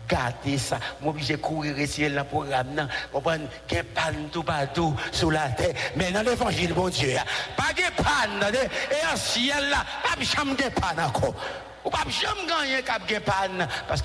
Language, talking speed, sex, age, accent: English, 155 wpm, male, 60-79, French